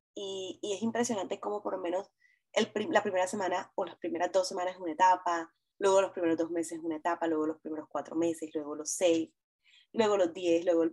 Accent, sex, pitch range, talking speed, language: American, female, 165-195 Hz, 220 wpm, English